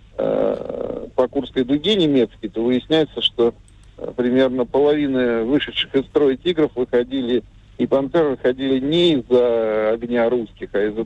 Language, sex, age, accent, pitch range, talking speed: Russian, male, 50-69, native, 115-145 Hz, 125 wpm